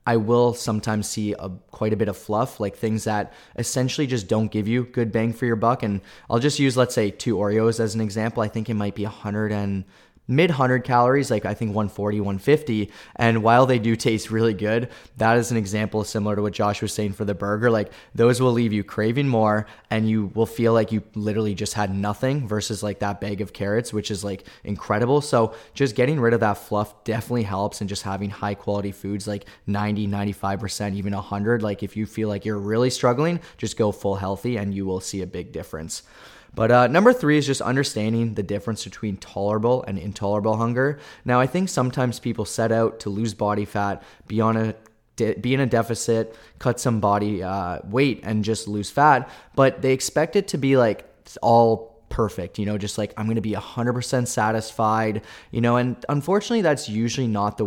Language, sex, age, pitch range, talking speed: English, male, 20-39, 105-120 Hz, 215 wpm